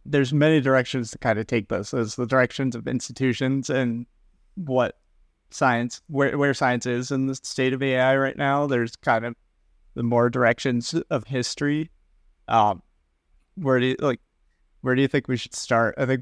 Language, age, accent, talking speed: English, 30-49, American, 180 wpm